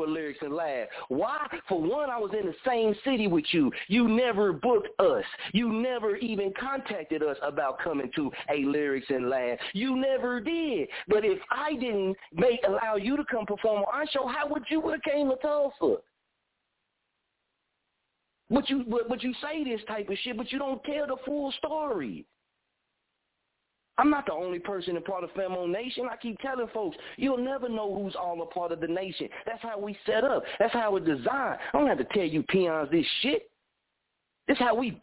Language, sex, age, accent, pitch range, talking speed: English, male, 40-59, American, 195-265 Hz, 200 wpm